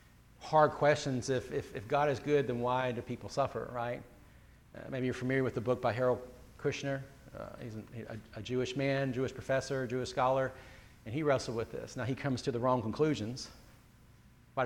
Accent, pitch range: American, 125-175 Hz